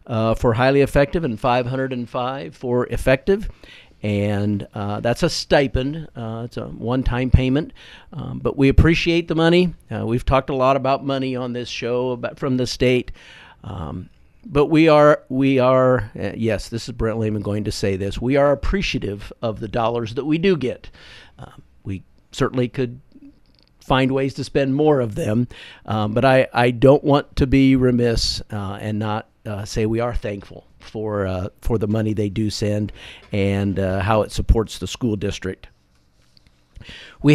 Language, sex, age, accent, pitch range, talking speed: English, male, 50-69, American, 105-130 Hz, 175 wpm